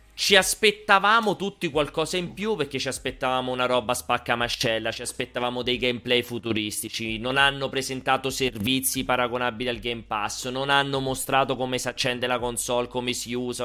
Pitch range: 120-165 Hz